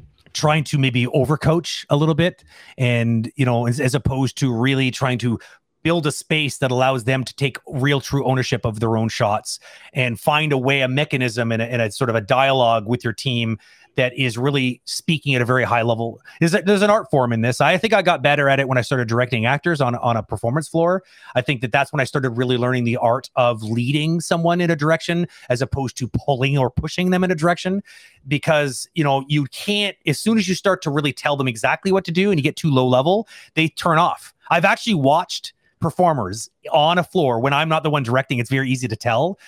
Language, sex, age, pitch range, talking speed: English, male, 30-49, 125-160 Hz, 235 wpm